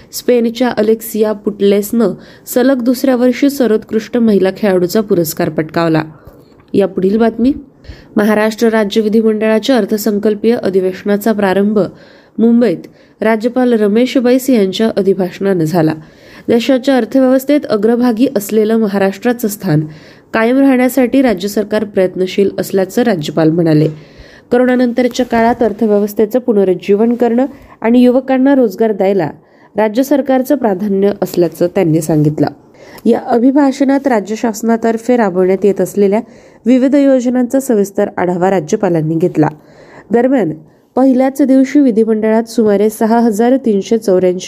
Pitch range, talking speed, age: 195-245 Hz, 100 wpm, 20-39